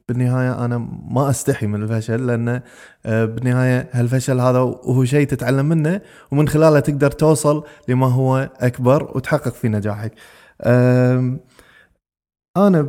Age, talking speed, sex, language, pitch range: 20-39, 115 wpm, male, English, 120-155 Hz